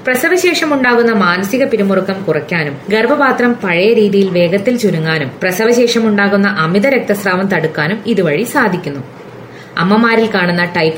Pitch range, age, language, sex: 170-220 Hz, 20-39, Malayalam, female